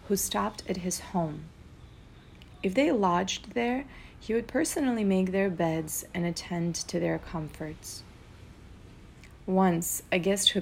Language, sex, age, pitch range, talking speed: English, female, 30-49, 170-205 Hz, 135 wpm